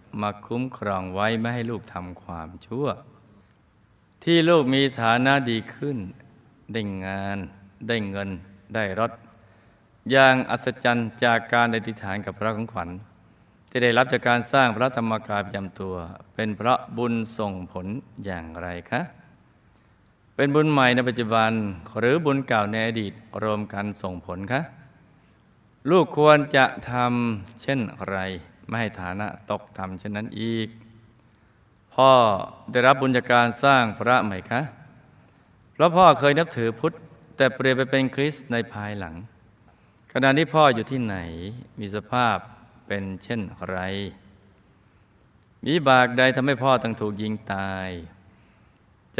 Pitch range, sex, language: 100-130 Hz, male, Thai